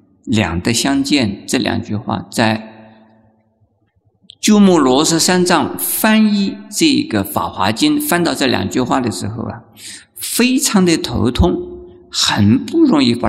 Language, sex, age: Chinese, male, 50-69